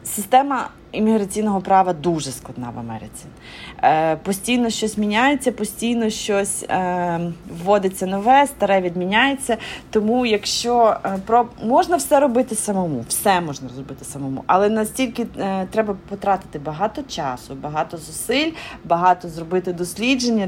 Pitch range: 175-220 Hz